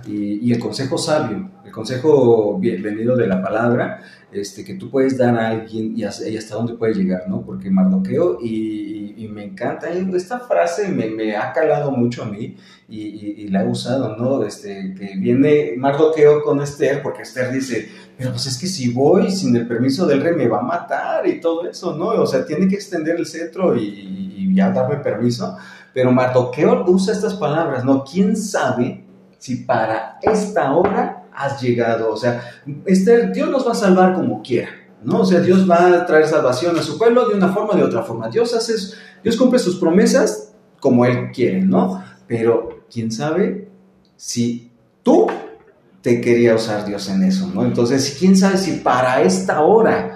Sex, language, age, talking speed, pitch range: male, Spanish, 30-49, 195 wpm, 115-195 Hz